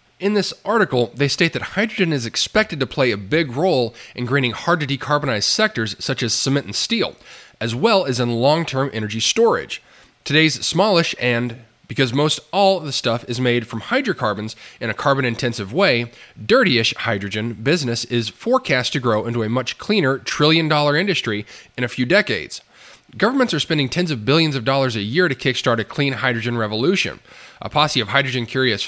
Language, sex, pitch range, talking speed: English, male, 120-160 Hz, 175 wpm